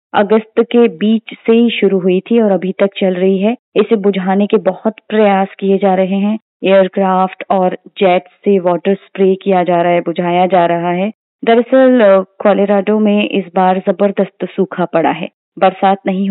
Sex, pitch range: female, 190-235 Hz